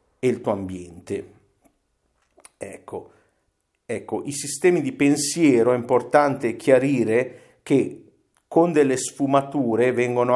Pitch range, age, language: 105-140 Hz, 50-69, Italian